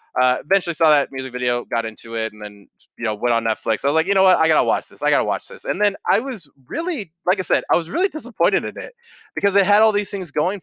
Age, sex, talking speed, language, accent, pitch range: 20-39, male, 290 wpm, English, American, 125-185 Hz